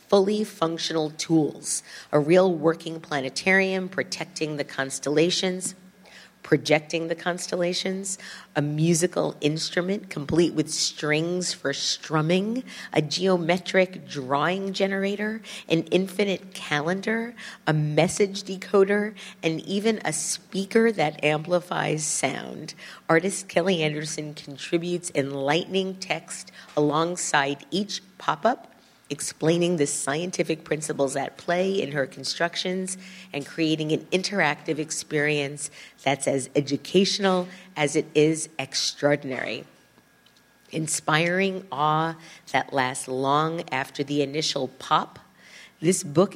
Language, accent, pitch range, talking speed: English, American, 145-185 Hz, 100 wpm